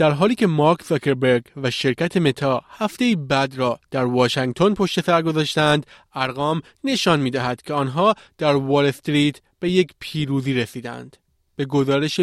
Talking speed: 145 wpm